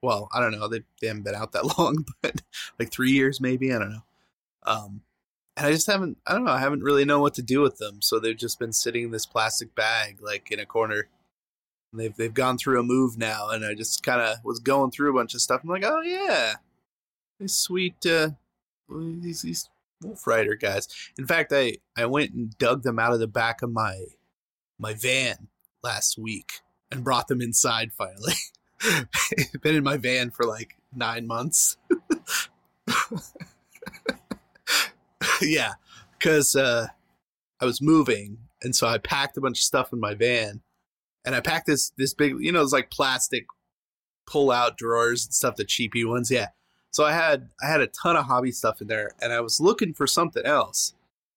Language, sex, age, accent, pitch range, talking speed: English, male, 20-39, American, 115-140 Hz, 195 wpm